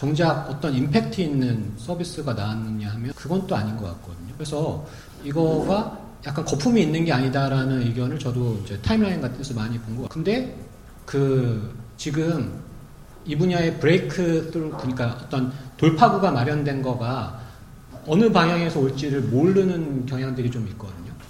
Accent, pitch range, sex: native, 125-165 Hz, male